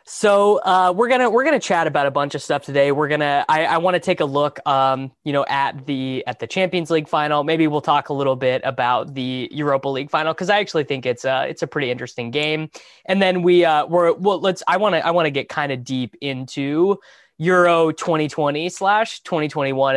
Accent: American